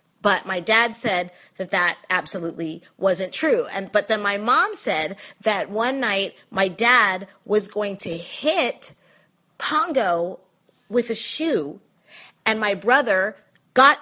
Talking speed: 135 wpm